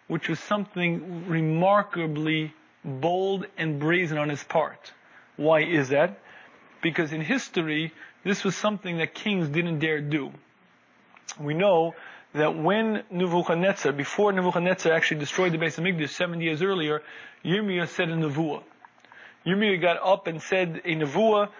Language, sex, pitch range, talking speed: English, male, 160-200 Hz, 140 wpm